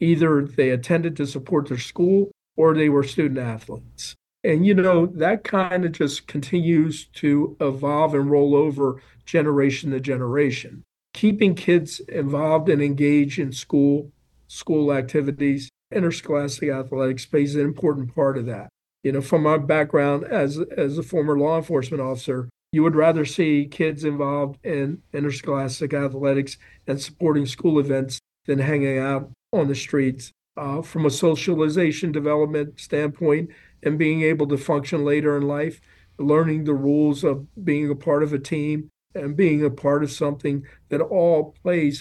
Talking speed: 155 wpm